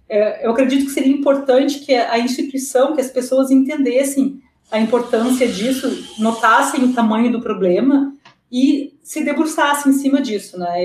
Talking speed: 150 wpm